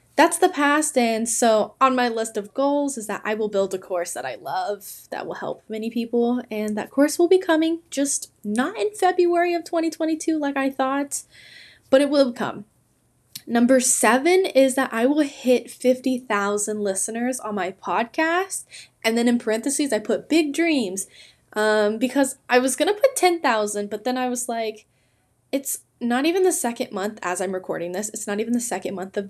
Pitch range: 200-270 Hz